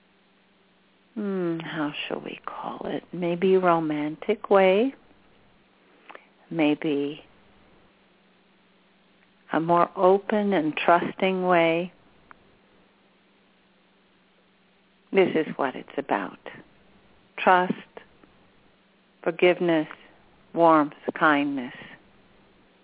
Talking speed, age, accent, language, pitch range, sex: 70 wpm, 50-69, American, English, 160-200 Hz, female